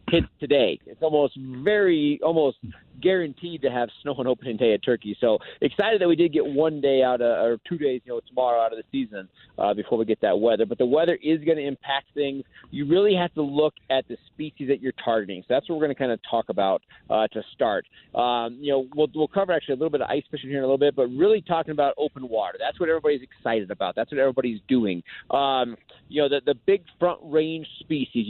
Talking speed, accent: 245 wpm, American